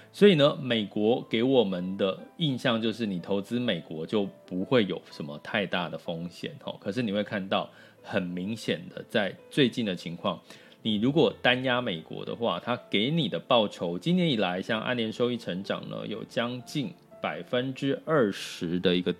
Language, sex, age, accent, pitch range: Chinese, male, 20-39, native, 100-155 Hz